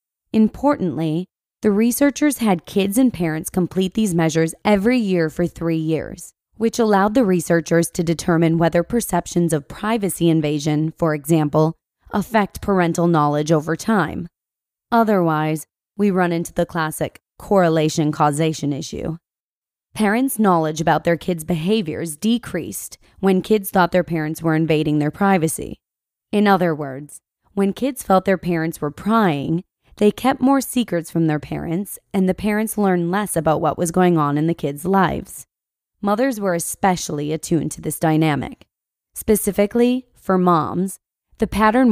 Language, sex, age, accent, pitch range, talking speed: English, female, 20-39, American, 160-200 Hz, 145 wpm